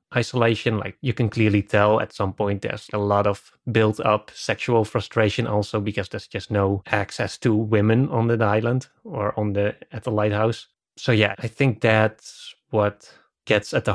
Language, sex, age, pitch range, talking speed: English, male, 20-39, 105-115 Hz, 185 wpm